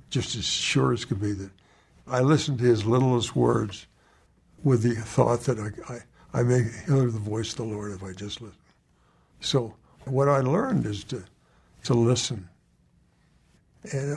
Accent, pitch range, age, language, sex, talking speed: American, 105-135 Hz, 60-79, English, male, 170 wpm